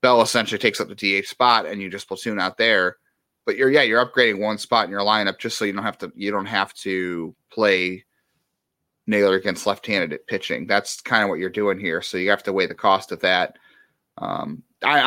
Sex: male